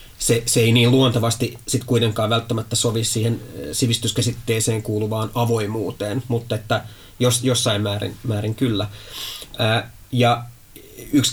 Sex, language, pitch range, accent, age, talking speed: male, Finnish, 110-125 Hz, native, 30-49, 120 wpm